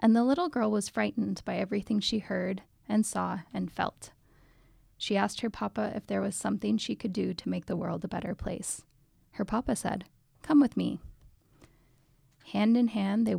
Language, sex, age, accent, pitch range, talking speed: English, female, 10-29, American, 185-220 Hz, 190 wpm